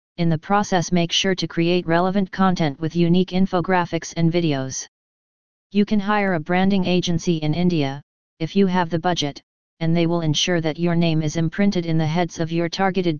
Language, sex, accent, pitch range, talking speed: English, female, American, 165-190 Hz, 190 wpm